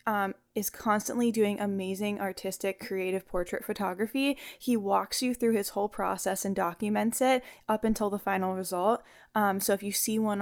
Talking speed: 175 wpm